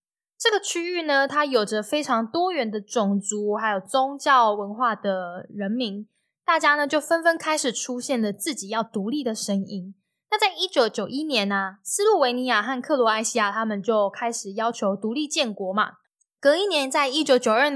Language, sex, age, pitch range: Chinese, female, 10-29, 210-285 Hz